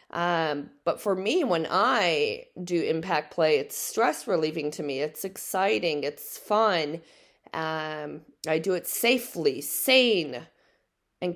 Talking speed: 130 wpm